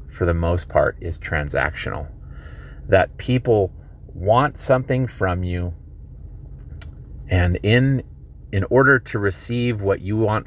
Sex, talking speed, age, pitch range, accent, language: male, 120 wpm, 30-49, 80-115 Hz, American, English